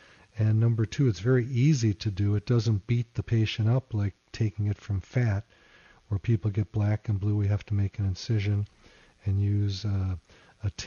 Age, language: 50-69, English